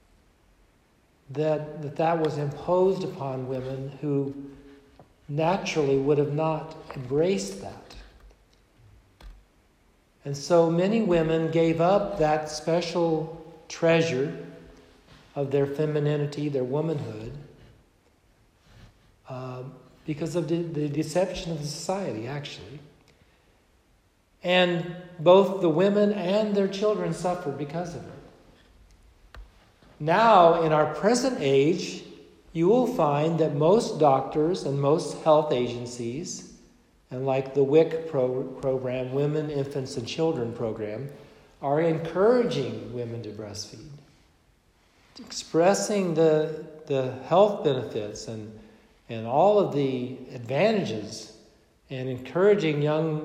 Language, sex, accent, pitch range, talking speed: English, male, American, 130-165 Hz, 105 wpm